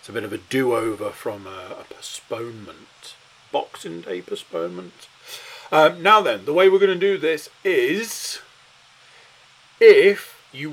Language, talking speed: English, 145 wpm